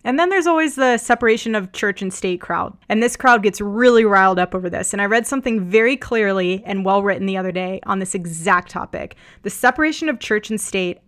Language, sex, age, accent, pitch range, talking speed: English, female, 20-39, American, 190-230 Hz, 220 wpm